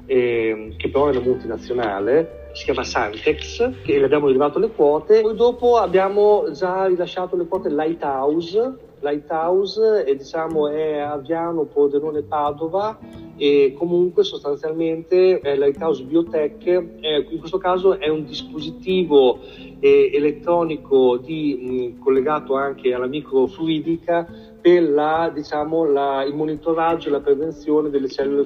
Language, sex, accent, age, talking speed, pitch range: Italian, male, native, 50-69, 120 wpm, 140-180 Hz